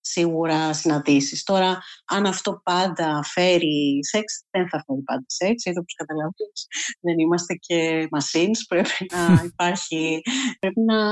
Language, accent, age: Greek, native, 30-49